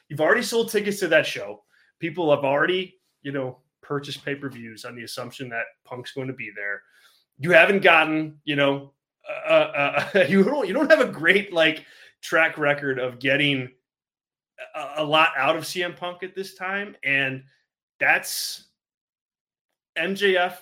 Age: 20-39